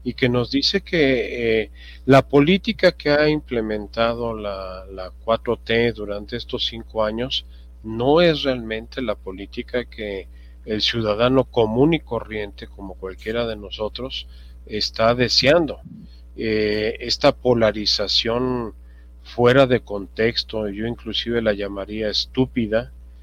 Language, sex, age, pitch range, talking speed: Spanish, male, 40-59, 100-120 Hz, 120 wpm